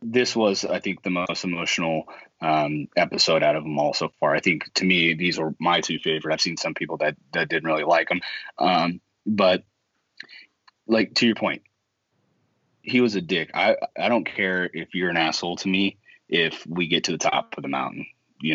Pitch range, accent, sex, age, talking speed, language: 80-95 Hz, American, male, 20-39, 205 wpm, English